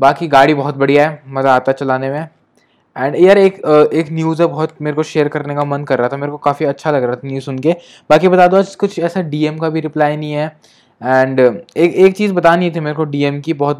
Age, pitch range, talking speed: 20-39, 135-165 Hz, 250 wpm